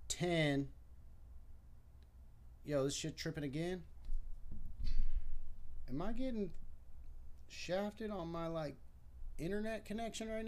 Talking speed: 90 wpm